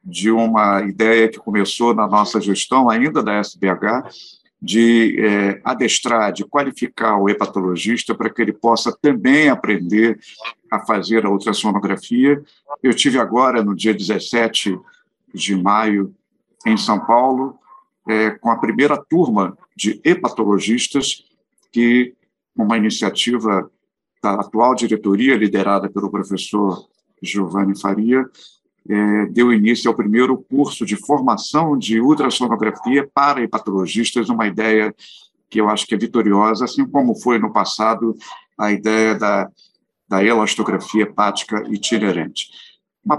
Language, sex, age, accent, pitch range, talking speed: Portuguese, male, 50-69, Brazilian, 105-120 Hz, 125 wpm